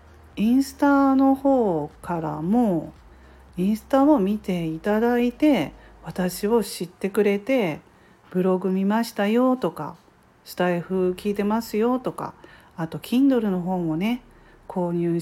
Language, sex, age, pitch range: Japanese, female, 40-59, 165-230 Hz